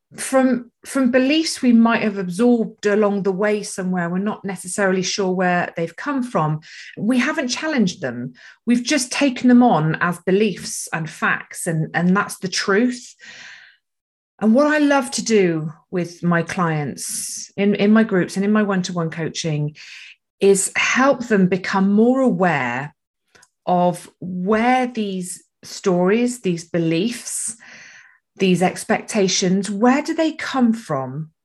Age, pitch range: 30-49, 175-220 Hz